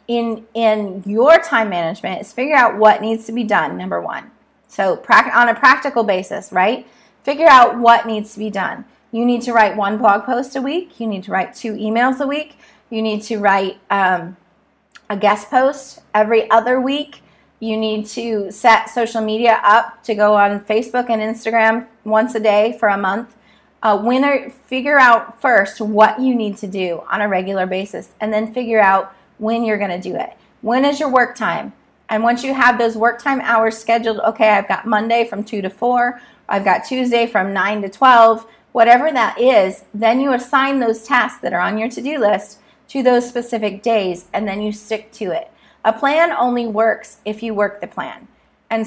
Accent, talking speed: American, 200 wpm